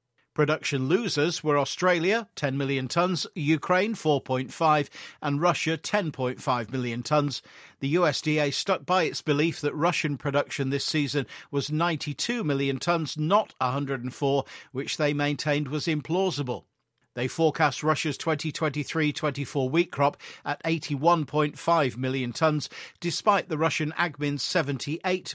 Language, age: English, 50-69